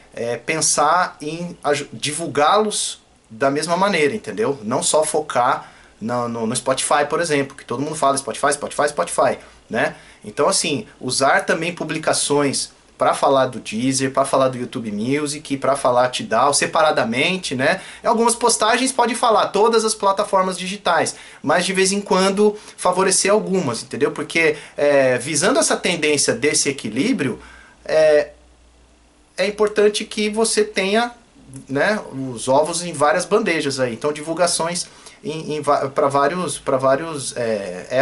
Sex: male